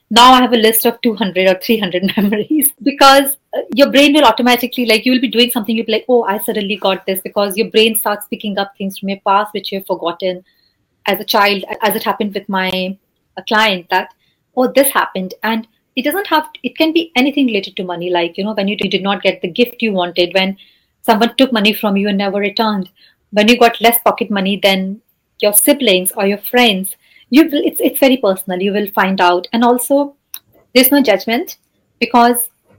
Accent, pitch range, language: Indian, 195-240 Hz, English